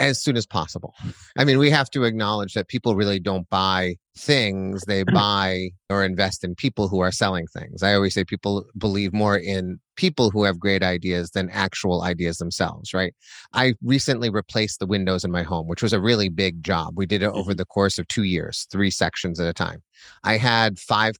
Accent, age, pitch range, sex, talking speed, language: American, 30-49, 95-115 Hz, male, 210 wpm, English